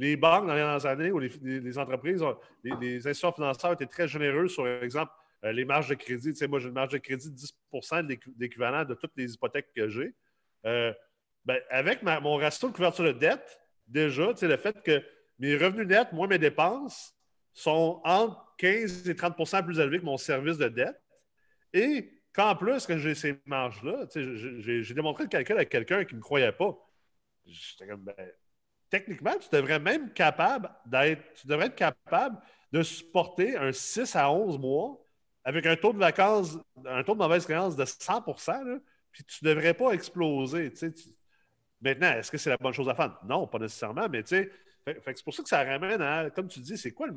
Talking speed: 210 wpm